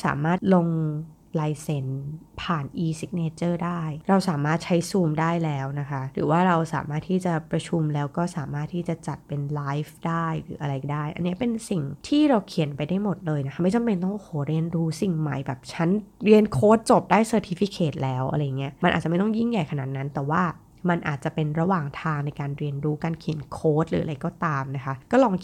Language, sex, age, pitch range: Thai, female, 20-39, 145-185 Hz